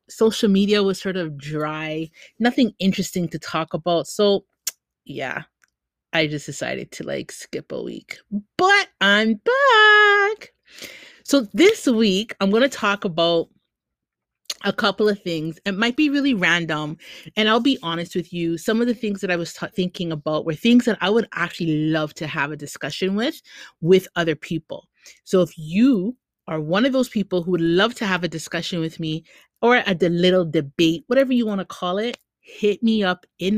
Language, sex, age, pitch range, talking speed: English, female, 30-49, 165-225 Hz, 185 wpm